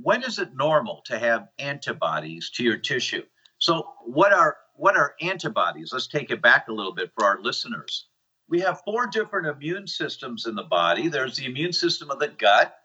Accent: American